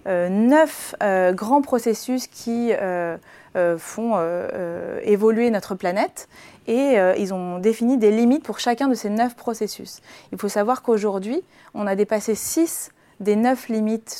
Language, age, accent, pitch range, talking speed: French, 30-49, French, 190-240 Hz, 160 wpm